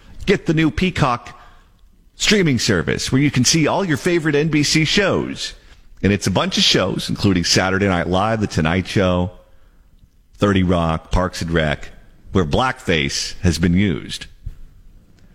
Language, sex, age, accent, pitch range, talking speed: English, male, 50-69, American, 90-140 Hz, 150 wpm